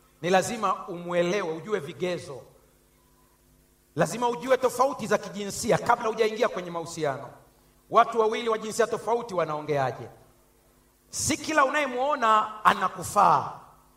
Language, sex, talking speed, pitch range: Swahili, male, 100 wpm, 200-280 Hz